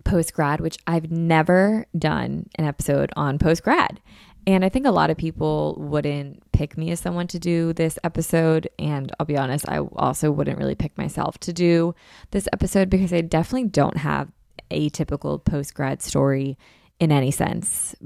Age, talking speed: 20-39, 170 wpm